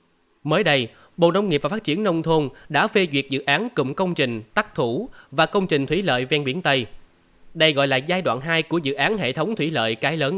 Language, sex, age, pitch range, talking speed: Vietnamese, male, 20-39, 130-175 Hz, 250 wpm